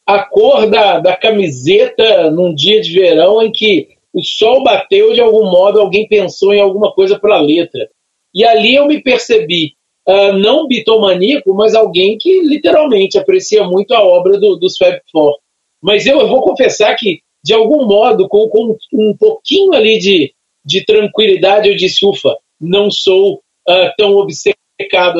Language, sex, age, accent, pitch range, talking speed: Portuguese, male, 40-59, Brazilian, 190-275 Hz, 165 wpm